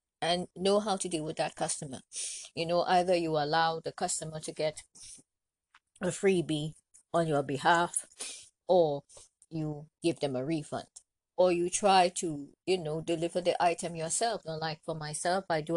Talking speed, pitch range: 165 wpm, 155-190 Hz